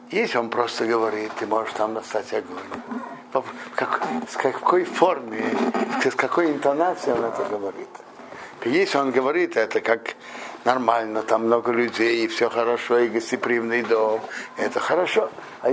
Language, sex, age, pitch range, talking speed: Russian, male, 60-79, 115-160 Hz, 135 wpm